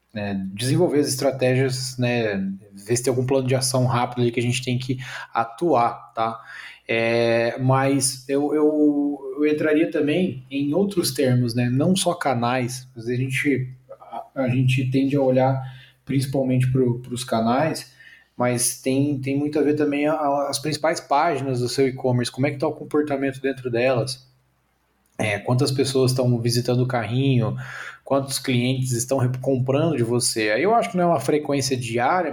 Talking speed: 170 wpm